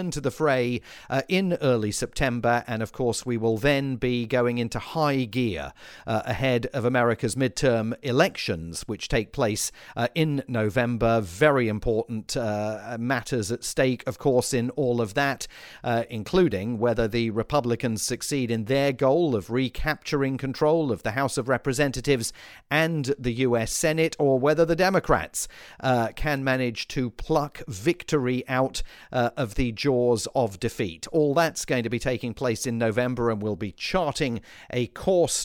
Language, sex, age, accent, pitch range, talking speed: English, male, 40-59, British, 115-145 Hz, 160 wpm